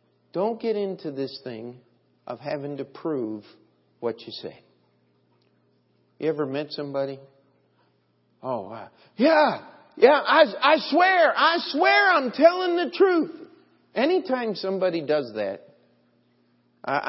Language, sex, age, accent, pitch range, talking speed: English, male, 50-69, American, 115-170 Hz, 120 wpm